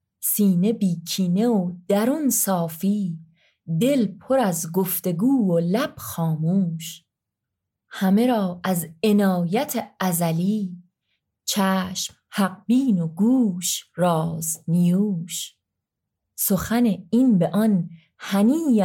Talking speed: 90 wpm